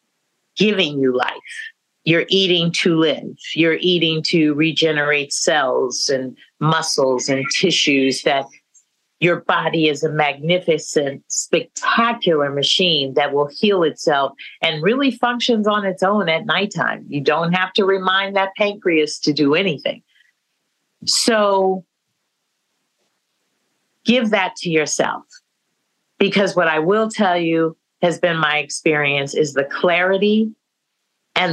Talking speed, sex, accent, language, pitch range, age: 125 wpm, female, American, English, 155-195 Hz, 50-69